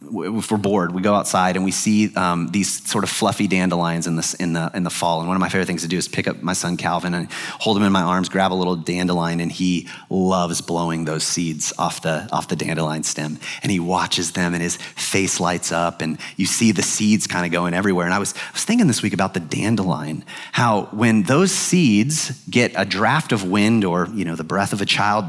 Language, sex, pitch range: English, male, 90-135 Hz